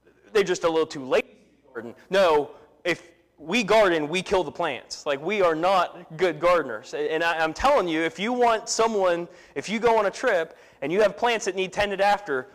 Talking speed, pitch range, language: 220 wpm, 135-180 Hz, English